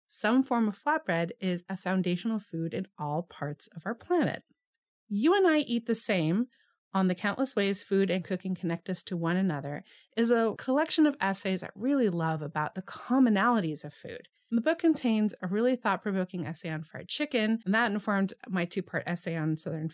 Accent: American